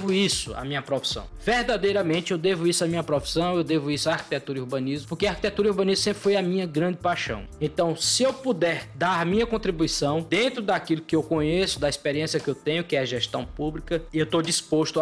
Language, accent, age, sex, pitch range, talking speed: Portuguese, Brazilian, 20-39, male, 155-195 Hz, 220 wpm